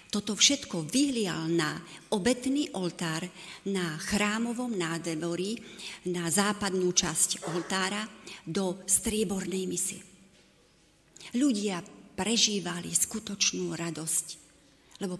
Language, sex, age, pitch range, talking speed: Slovak, female, 40-59, 175-210 Hz, 85 wpm